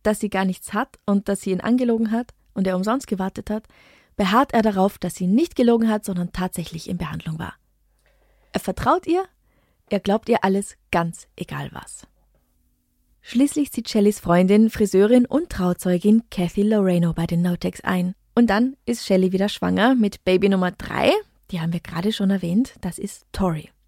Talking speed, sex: 180 wpm, female